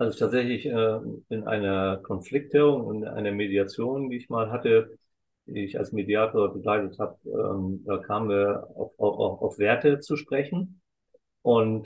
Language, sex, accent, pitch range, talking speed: German, male, German, 105-130 Hz, 150 wpm